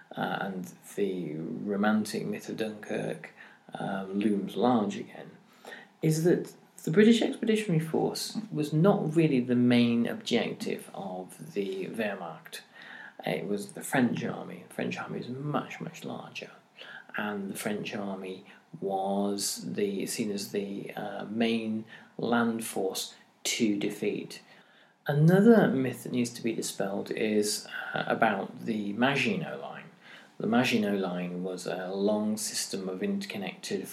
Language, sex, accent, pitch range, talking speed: English, male, British, 100-140 Hz, 135 wpm